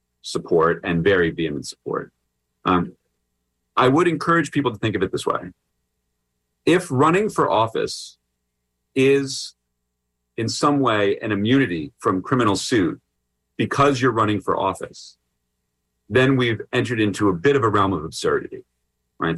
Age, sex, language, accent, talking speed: 40-59, male, English, American, 140 wpm